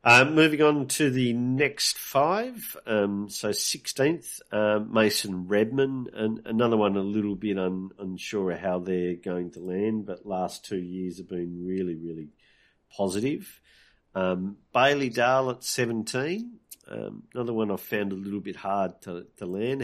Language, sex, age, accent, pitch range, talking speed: English, male, 50-69, Australian, 95-115 Hz, 155 wpm